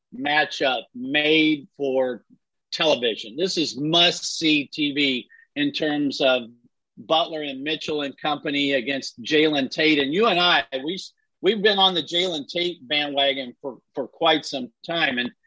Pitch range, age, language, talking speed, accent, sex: 145-185 Hz, 50-69, English, 145 wpm, American, male